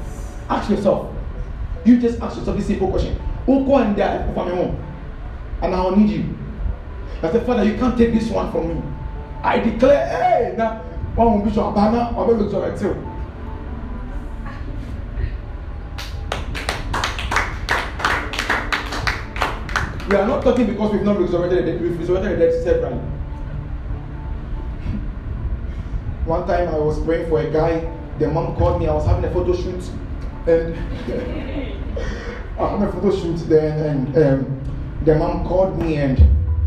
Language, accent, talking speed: English, Nigerian, 145 wpm